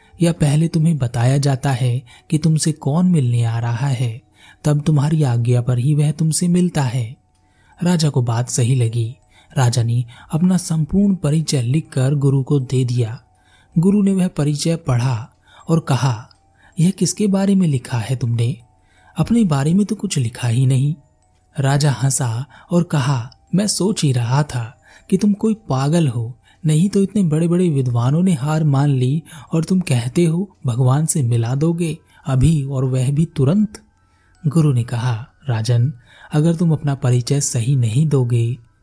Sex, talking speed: male, 160 wpm